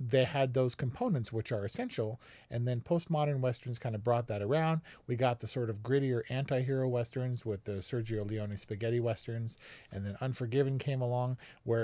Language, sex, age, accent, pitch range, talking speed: English, male, 40-59, American, 110-130 Hz, 180 wpm